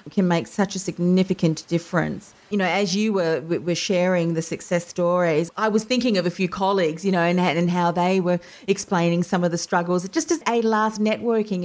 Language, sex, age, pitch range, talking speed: English, female, 40-59, 165-195 Hz, 205 wpm